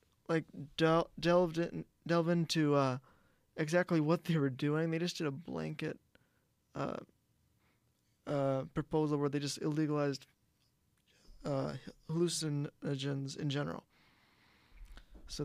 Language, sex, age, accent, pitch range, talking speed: English, male, 20-39, American, 135-160 Hz, 110 wpm